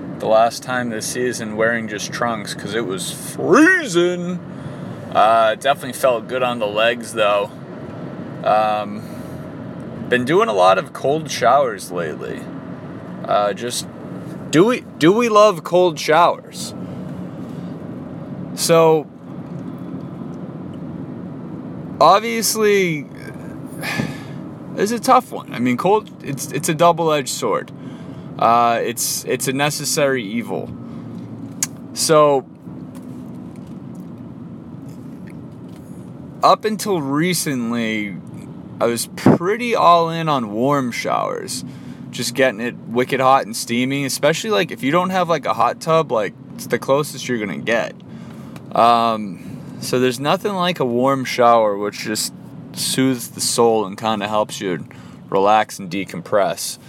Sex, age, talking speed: male, 20-39, 120 wpm